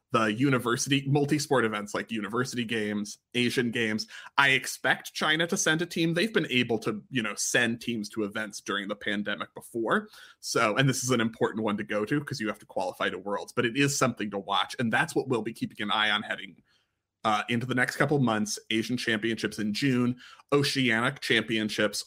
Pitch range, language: 110-150 Hz, English